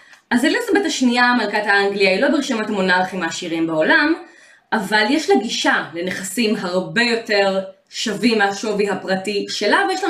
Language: Hebrew